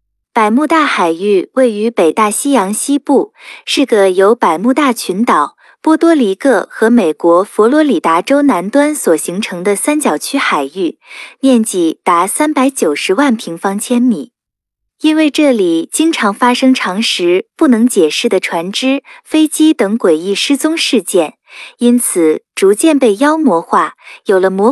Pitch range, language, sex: 195-285 Hz, Chinese, female